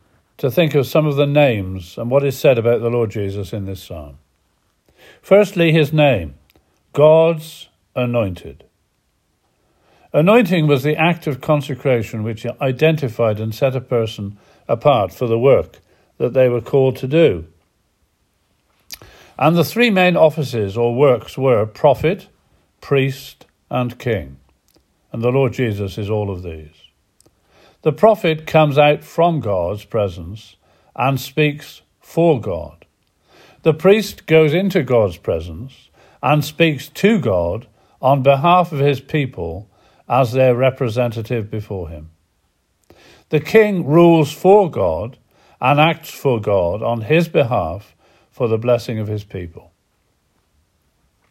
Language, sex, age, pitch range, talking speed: English, male, 50-69, 105-155 Hz, 135 wpm